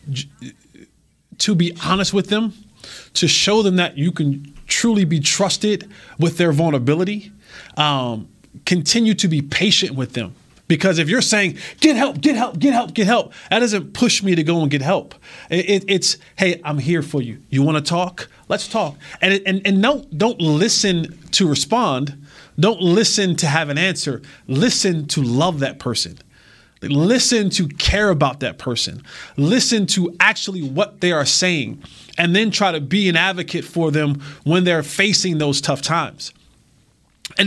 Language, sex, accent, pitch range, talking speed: English, male, American, 145-195 Hz, 170 wpm